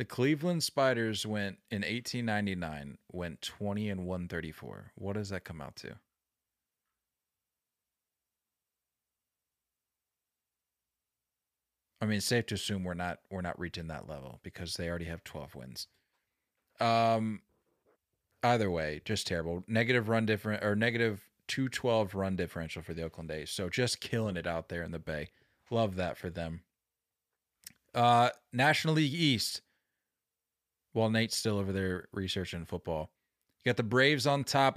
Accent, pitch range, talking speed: American, 90-120 Hz, 140 wpm